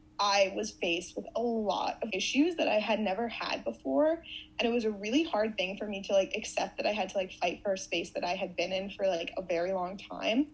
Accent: American